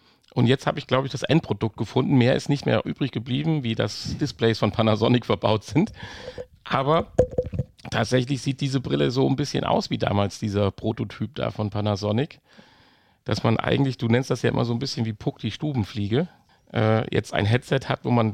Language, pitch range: German, 110-135 Hz